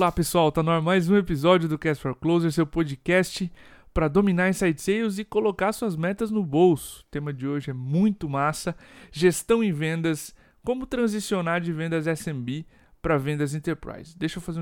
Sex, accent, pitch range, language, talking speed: male, Brazilian, 140-175 Hz, Portuguese, 185 wpm